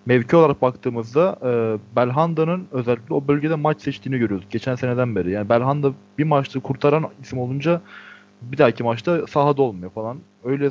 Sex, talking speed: male, 155 wpm